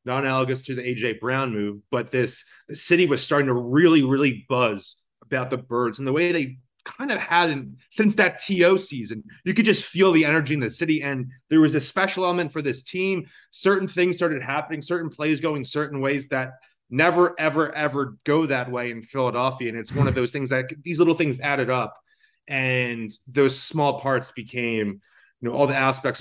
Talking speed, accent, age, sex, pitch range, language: 210 wpm, American, 30-49, male, 120-150 Hz, English